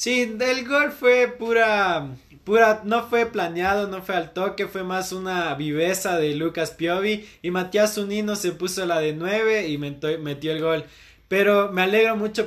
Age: 20-39